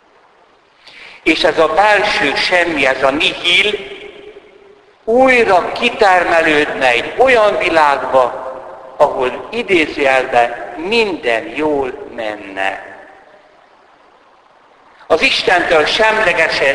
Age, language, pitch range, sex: 60-79, Hungarian, 135-210 Hz, male